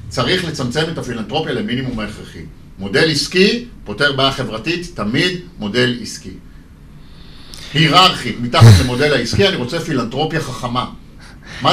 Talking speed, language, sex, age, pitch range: 120 wpm, Hebrew, male, 50-69, 125-180 Hz